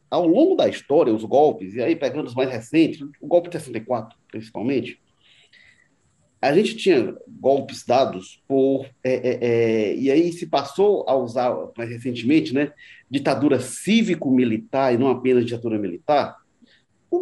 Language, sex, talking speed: Portuguese, male, 155 wpm